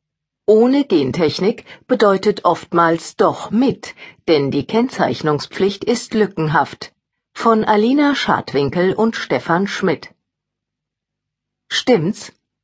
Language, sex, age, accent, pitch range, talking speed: German, female, 50-69, German, 150-220 Hz, 85 wpm